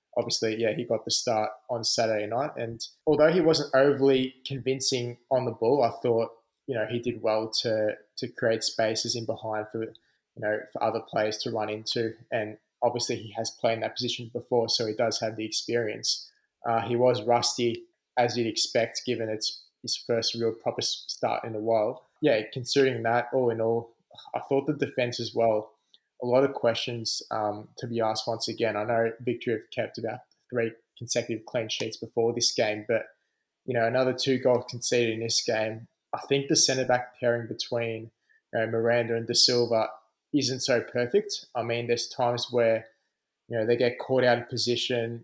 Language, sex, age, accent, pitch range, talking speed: English, male, 20-39, Australian, 115-125 Hz, 190 wpm